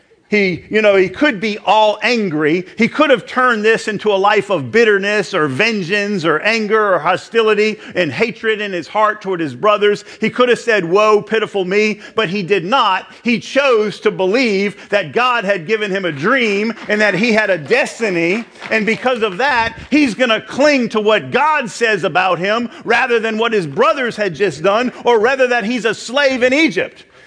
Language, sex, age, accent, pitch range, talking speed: English, male, 50-69, American, 195-235 Hz, 200 wpm